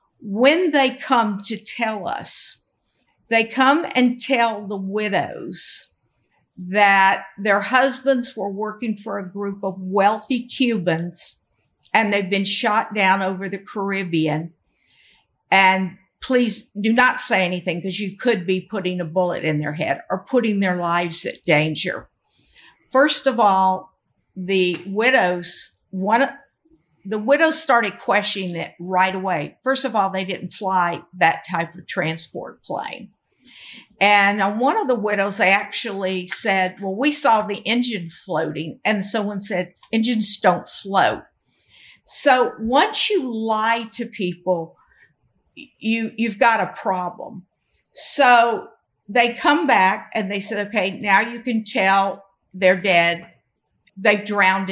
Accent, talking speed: American, 135 wpm